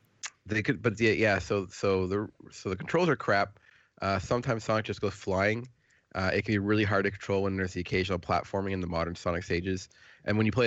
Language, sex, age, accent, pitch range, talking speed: English, male, 30-49, American, 95-115 Hz, 230 wpm